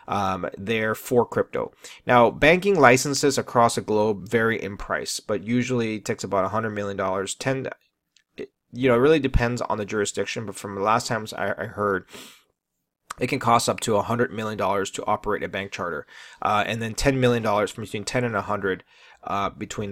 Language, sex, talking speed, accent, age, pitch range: English, male, 185 wpm, American, 30-49, 105-130 Hz